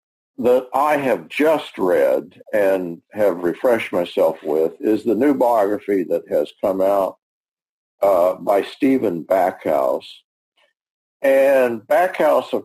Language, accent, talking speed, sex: English, American, 120 wpm, male